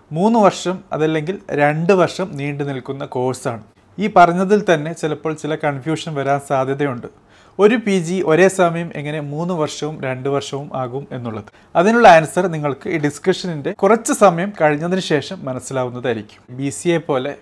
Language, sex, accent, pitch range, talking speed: Malayalam, male, native, 140-180 Hz, 140 wpm